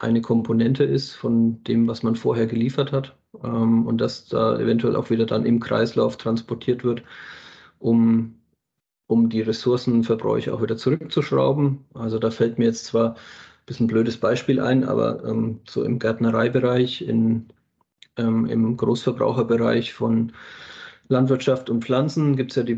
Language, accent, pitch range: German, German, 115-130 Hz